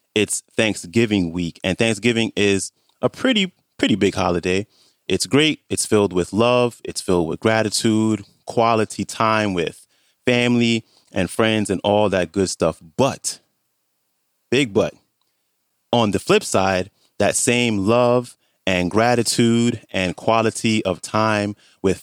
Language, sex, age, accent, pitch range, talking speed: English, male, 30-49, American, 95-115 Hz, 135 wpm